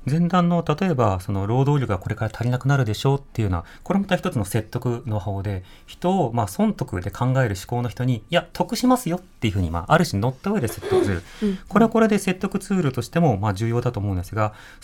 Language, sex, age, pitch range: Japanese, male, 30-49, 110-175 Hz